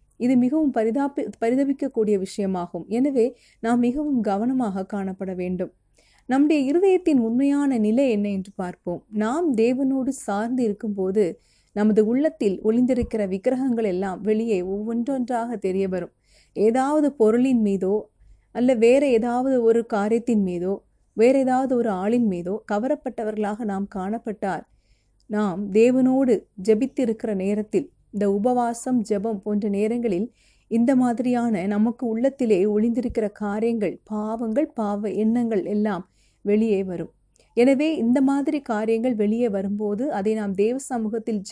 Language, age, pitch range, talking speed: Tamil, 30-49, 200-250 Hz, 115 wpm